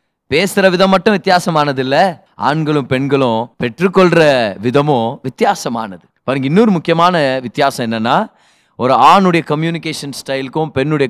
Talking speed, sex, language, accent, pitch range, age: 110 wpm, male, Tamil, native, 145-210 Hz, 30-49